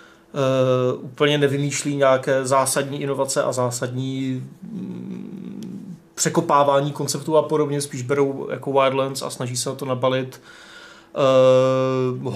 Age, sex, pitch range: 30-49, male, 130-145 Hz